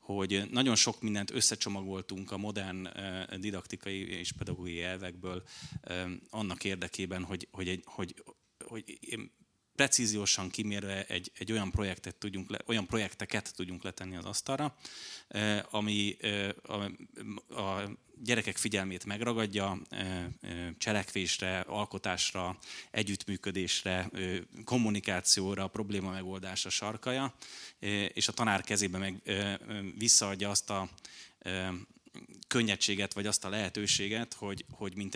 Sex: male